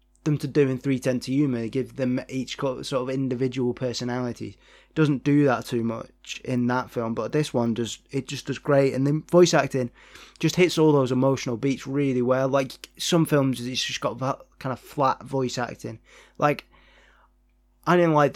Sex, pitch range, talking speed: male, 125-145 Hz, 195 wpm